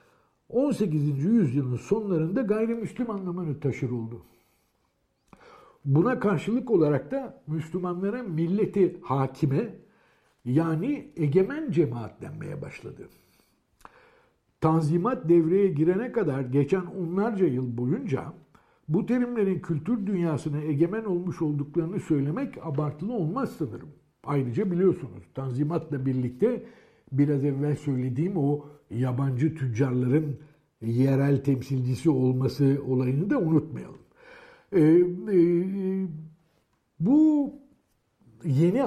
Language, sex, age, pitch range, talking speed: Turkish, male, 60-79, 135-185 Hz, 85 wpm